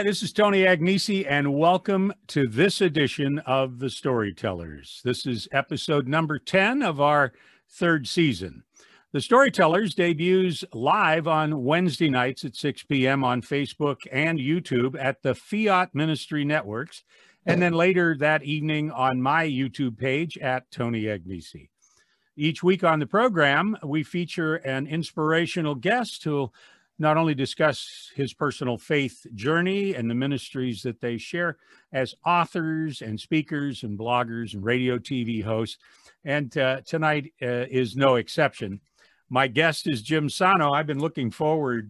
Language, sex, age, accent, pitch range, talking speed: English, male, 50-69, American, 125-165 Hz, 150 wpm